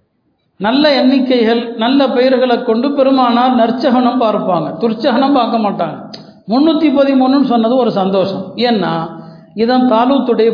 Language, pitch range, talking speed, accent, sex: Tamil, 205-255 Hz, 110 wpm, native, male